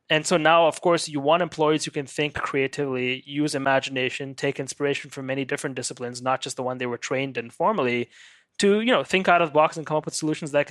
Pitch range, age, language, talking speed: 135-155 Hz, 20-39, English, 240 wpm